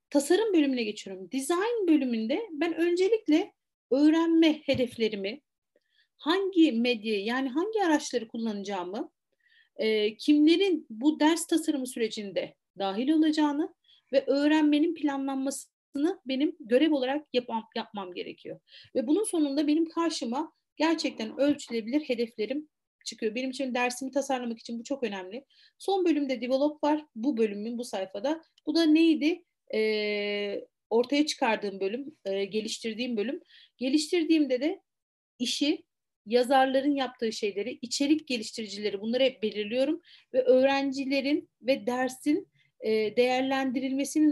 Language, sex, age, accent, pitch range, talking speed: Turkish, female, 40-59, native, 235-310 Hz, 110 wpm